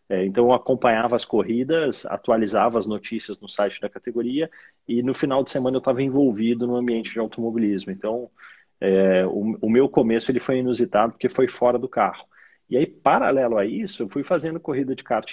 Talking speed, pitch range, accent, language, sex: 190 wpm, 105-125 Hz, Brazilian, Portuguese, male